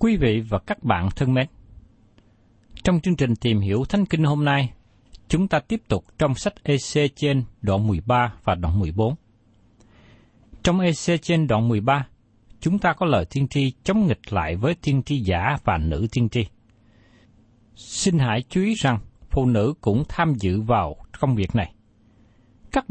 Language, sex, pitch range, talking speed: Vietnamese, male, 110-165 Hz, 175 wpm